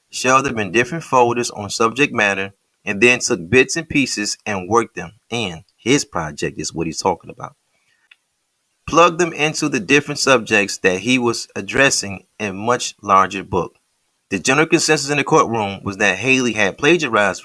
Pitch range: 105-135 Hz